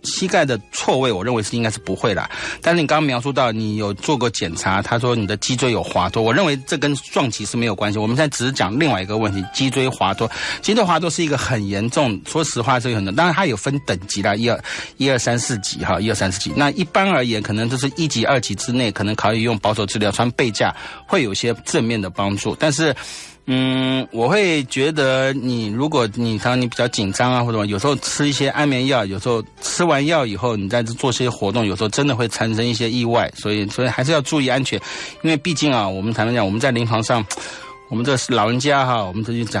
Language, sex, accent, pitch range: English, male, Chinese, 105-135 Hz